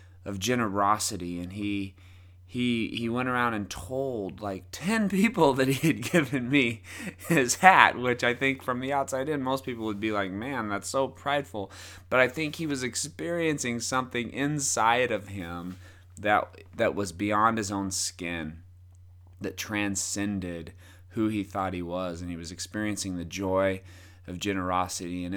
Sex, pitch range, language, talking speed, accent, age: male, 90-110 Hz, English, 165 wpm, American, 30-49